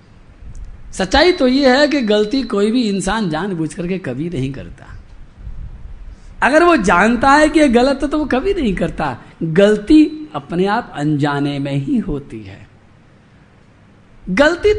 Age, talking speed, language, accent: 50-69, 140 wpm, Hindi, native